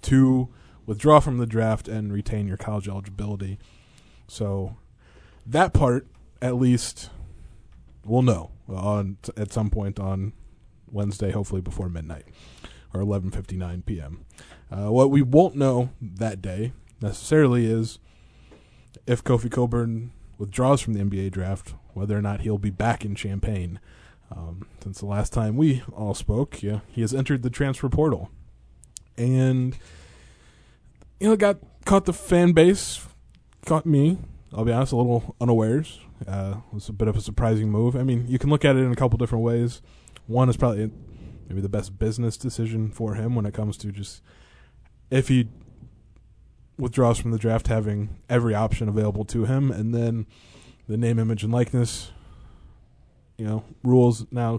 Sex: male